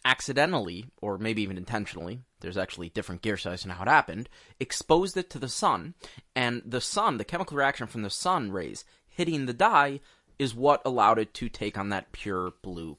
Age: 30-49